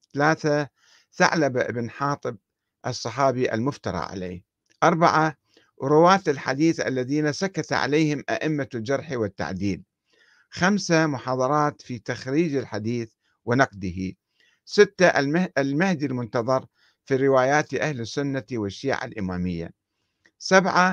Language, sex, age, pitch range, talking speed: Arabic, male, 60-79, 110-145 Hz, 90 wpm